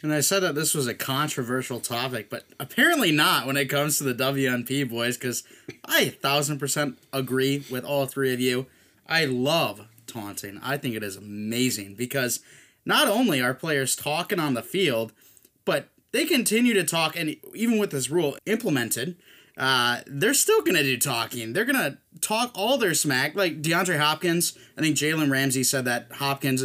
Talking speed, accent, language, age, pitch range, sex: 185 wpm, American, English, 20-39, 125-155 Hz, male